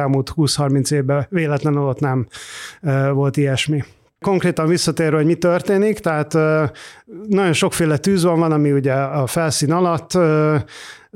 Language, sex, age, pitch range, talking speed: Hungarian, male, 30-49, 145-165 Hz, 140 wpm